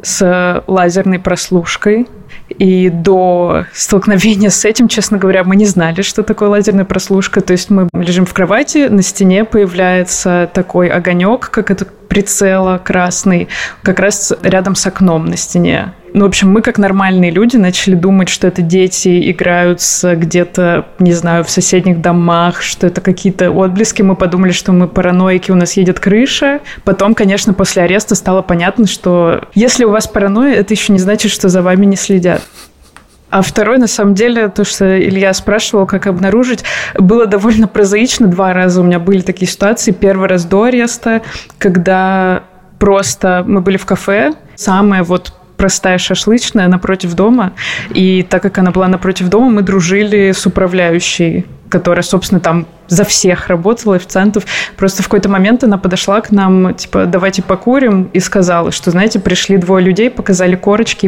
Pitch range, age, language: 185-205 Hz, 20-39, Russian